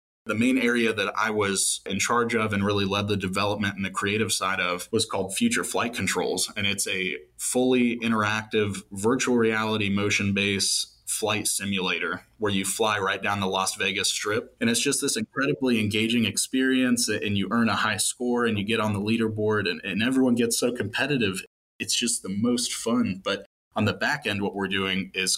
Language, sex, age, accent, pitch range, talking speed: English, male, 20-39, American, 95-115 Hz, 195 wpm